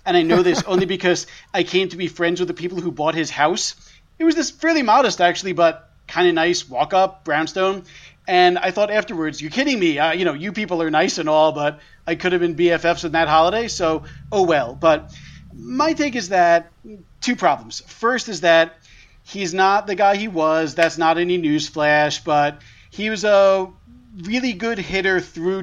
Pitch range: 155-195 Hz